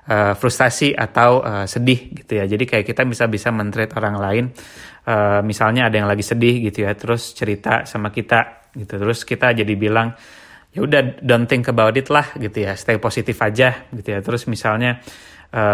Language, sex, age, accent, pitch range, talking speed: Indonesian, male, 20-39, native, 110-125 Hz, 185 wpm